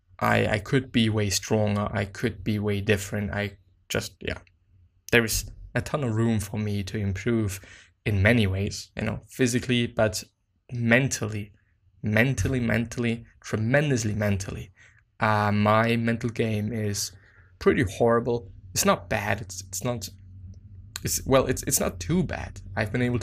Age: 20-39